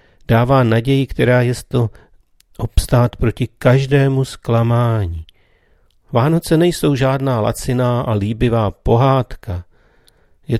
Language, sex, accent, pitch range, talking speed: Czech, male, native, 95-115 Hz, 100 wpm